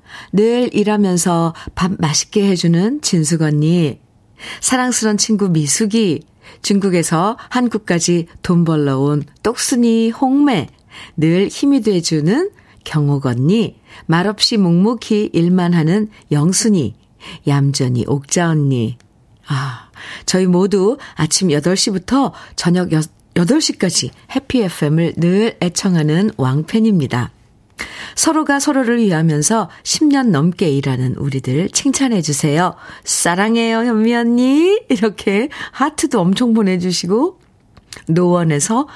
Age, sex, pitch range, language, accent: 50-69, female, 155-220 Hz, Korean, native